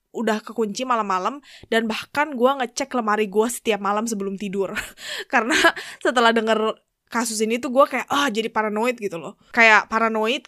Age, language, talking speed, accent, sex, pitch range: 20-39, Indonesian, 165 wpm, native, female, 205-250 Hz